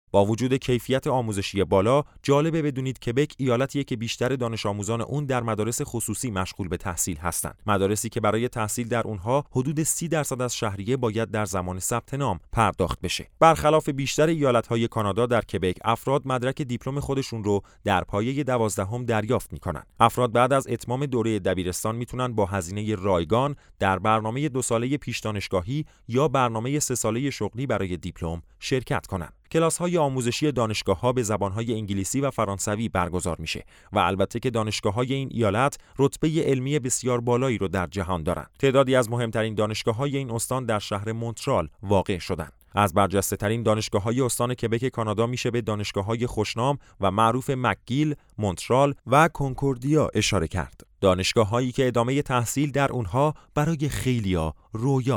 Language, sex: Persian, male